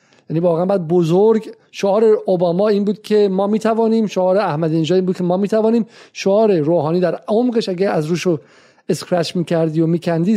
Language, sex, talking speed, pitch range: Persian, male, 175 wpm, 155-210 Hz